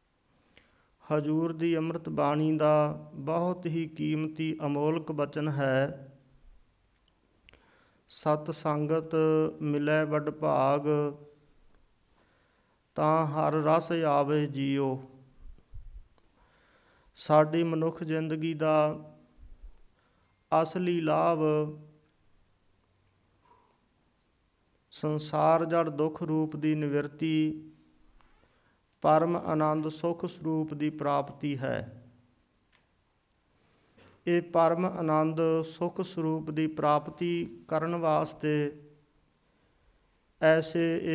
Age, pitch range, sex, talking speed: 50-69, 140-160 Hz, male, 70 wpm